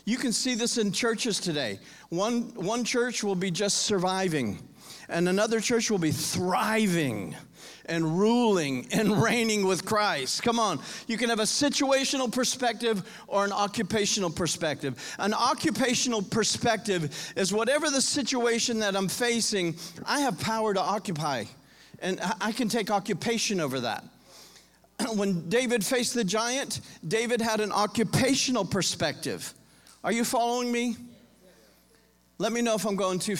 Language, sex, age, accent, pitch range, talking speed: English, male, 40-59, American, 195-245 Hz, 145 wpm